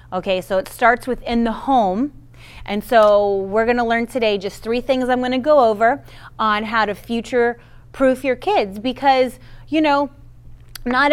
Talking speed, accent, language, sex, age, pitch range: 175 wpm, American, English, female, 30-49, 180-230 Hz